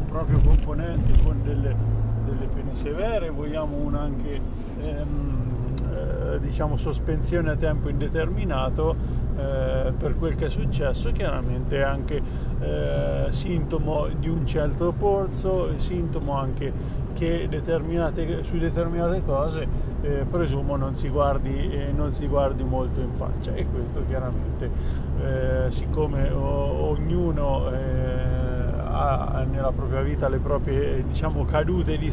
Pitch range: 70-80 Hz